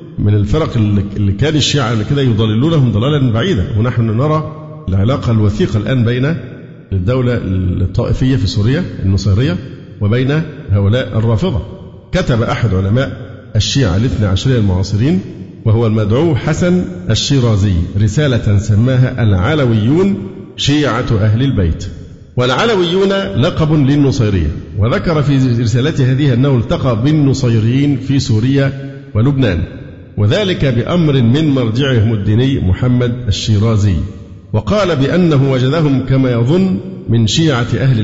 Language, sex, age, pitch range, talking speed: Arabic, male, 50-69, 105-135 Hz, 110 wpm